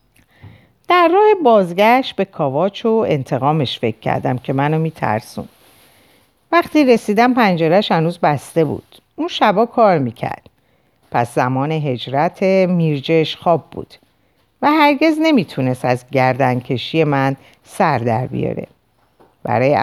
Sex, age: female, 50-69